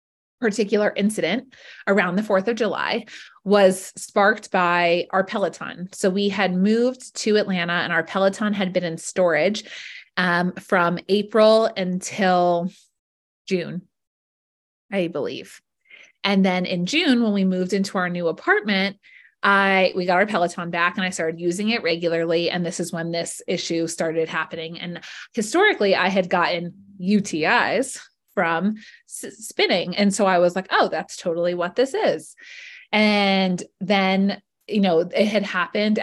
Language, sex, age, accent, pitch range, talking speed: English, female, 20-39, American, 175-215 Hz, 150 wpm